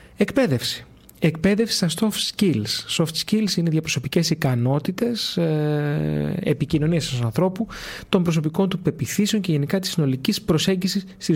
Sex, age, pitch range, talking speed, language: male, 30-49, 140-180 Hz, 120 wpm, Greek